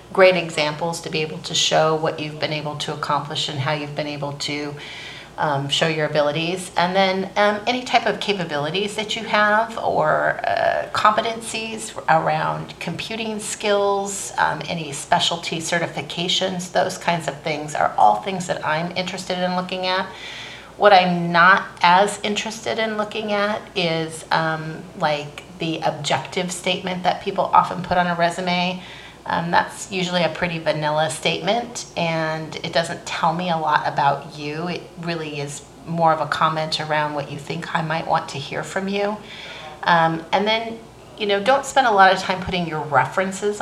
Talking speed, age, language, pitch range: 170 wpm, 30-49, English, 155-195 Hz